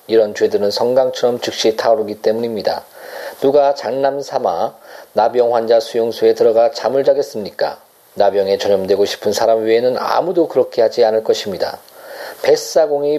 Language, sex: Korean, male